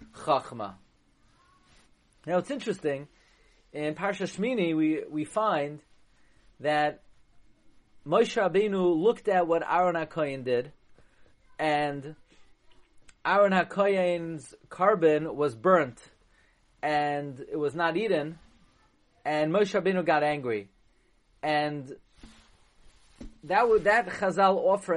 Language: English